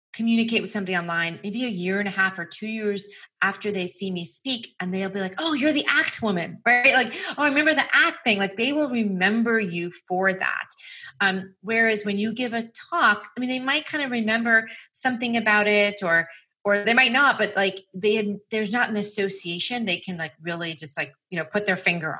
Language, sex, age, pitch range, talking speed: English, female, 30-49, 175-225 Hz, 225 wpm